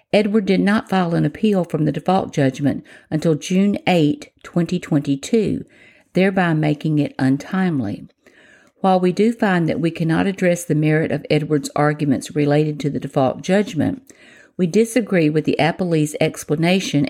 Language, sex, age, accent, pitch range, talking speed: English, female, 50-69, American, 150-190 Hz, 145 wpm